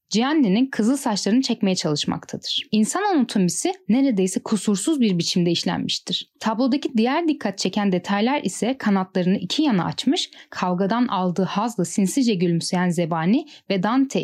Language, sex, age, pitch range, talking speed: Turkish, female, 10-29, 180-250 Hz, 125 wpm